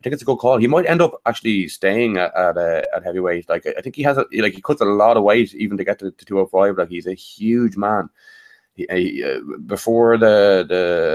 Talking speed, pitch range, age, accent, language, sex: 260 wpm, 90-105 Hz, 20-39, Irish, English, male